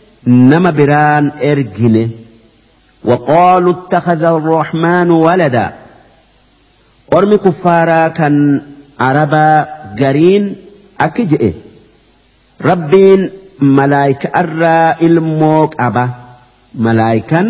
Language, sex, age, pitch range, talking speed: Arabic, male, 50-69, 130-170 Hz, 60 wpm